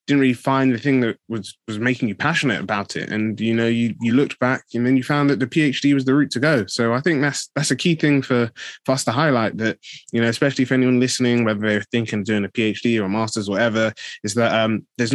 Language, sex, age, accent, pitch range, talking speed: English, male, 20-39, British, 110-130 Hz, 270 wpm